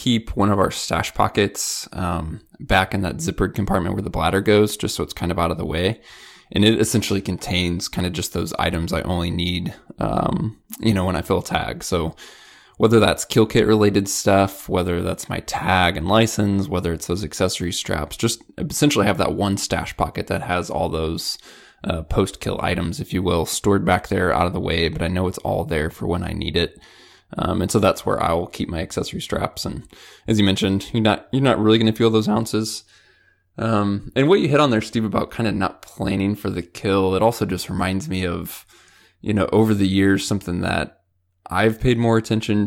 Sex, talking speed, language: male, 220 wpm, English